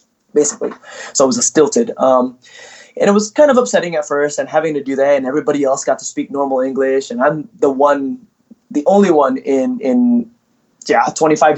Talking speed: 195 wpm